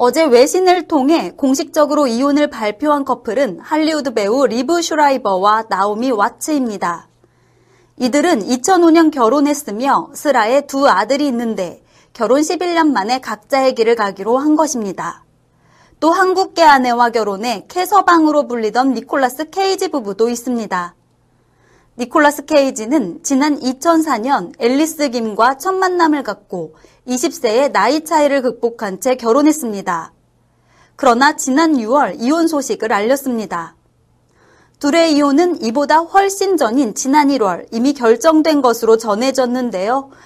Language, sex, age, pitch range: Korean, female, 30-49, 235-310 Hz